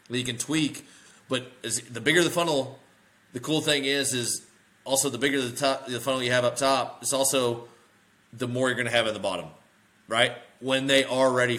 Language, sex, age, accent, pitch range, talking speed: English, male, 30-49, American, 105-125 Hz, 205 wpm